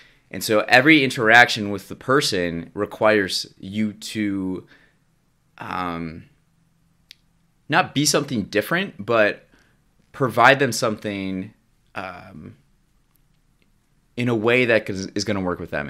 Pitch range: 90-120 Hz